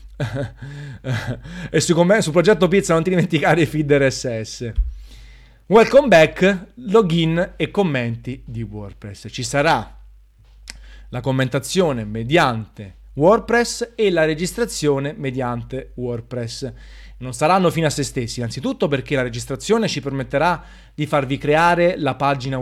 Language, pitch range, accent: Italian, 120-155 Hz, native